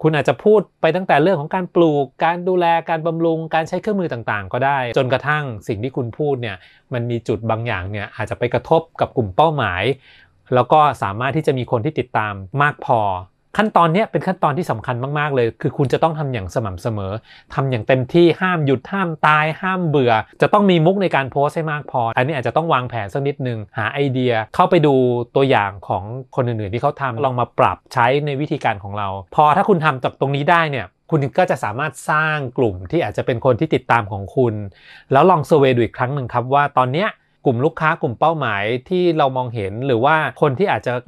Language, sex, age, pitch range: Thai, male, 20-39, 115-155 Hz